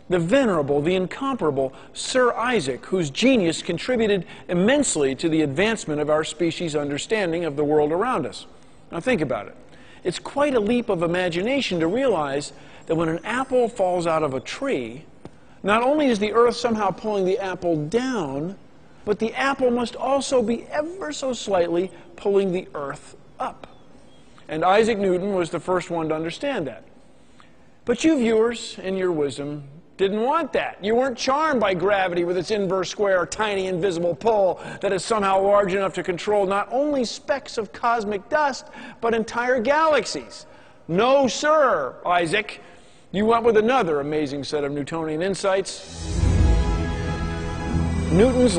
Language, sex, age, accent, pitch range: Chinese, male, 40-59, American, 160-235 Hz